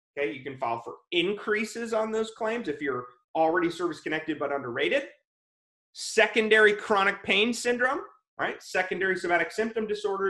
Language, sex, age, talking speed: English, male, 30-49, 145 wpm